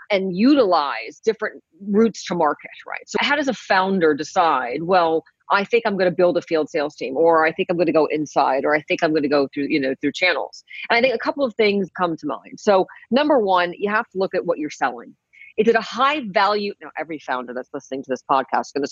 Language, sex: English, female